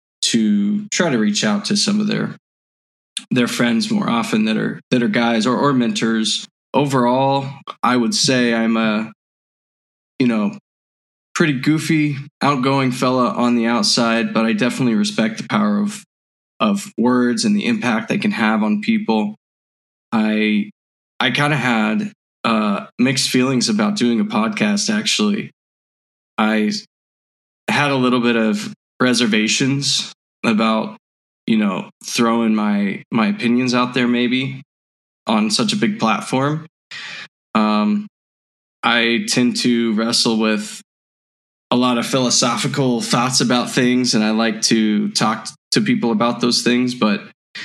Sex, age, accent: male, 20-39, American